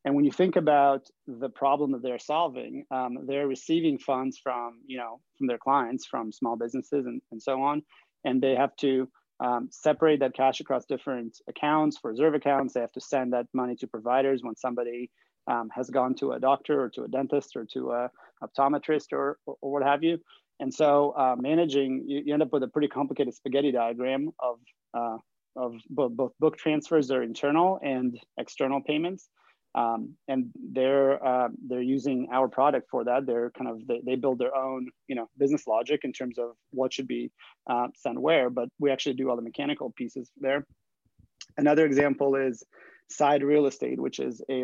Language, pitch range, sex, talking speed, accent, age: English, 125-145 Hz, male, 195 wpm, American, 30-49